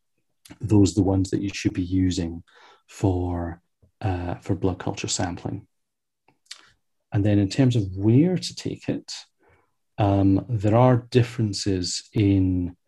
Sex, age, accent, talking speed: male, 40-59, British, 135 wpm